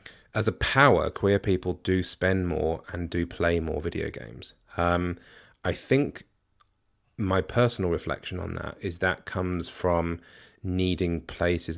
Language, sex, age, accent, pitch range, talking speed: English, male, 30-49, British, 80-95 Hz, 145 wpm